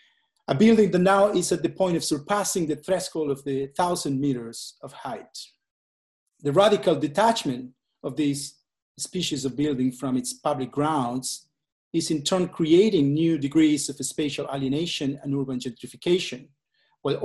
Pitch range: 135-165 Hz